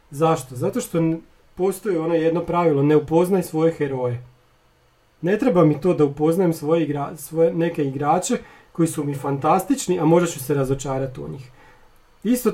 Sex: male